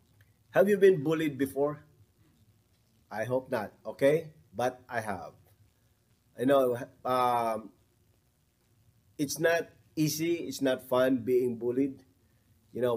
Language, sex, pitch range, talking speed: English, male, 110-135 Hz, 115 wpm